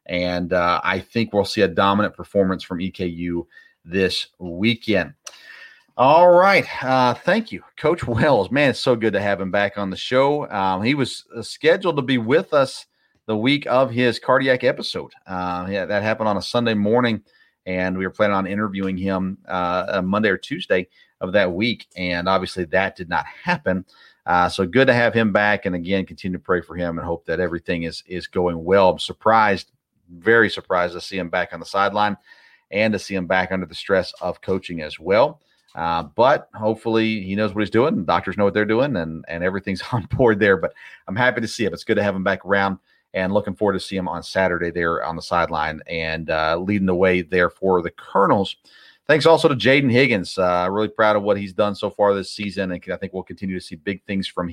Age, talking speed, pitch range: 40-59, 220 wpm, 90-105 Hz